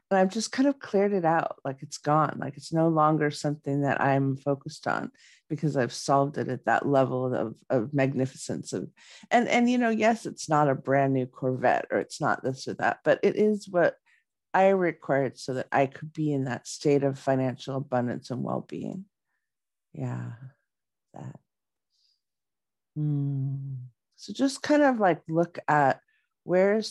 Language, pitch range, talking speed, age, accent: English, 135-195 Hz, 175 wpm, 50-69, American